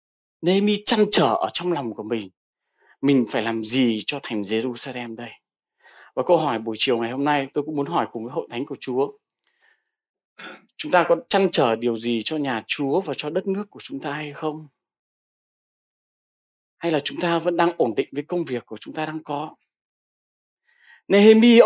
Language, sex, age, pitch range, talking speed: Vietnamese, male, 20-39, 140-210 Hz, 195 wpm